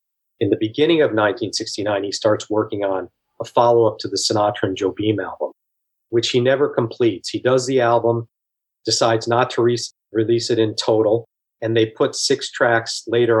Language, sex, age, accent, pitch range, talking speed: English, male, 40-59, American, 110-135 Hz, 180 wpm